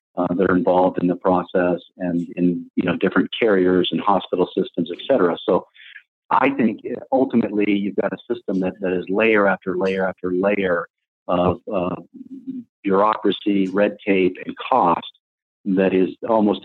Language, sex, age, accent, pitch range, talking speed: English, male, 50-69, American, 85-100 Hz, 160 wpm